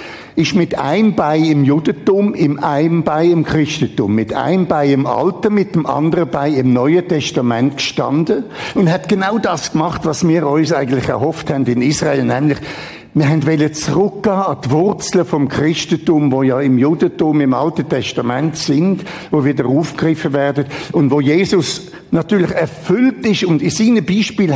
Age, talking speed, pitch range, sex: 60-79, 165 wpm, 130-170 Hz, male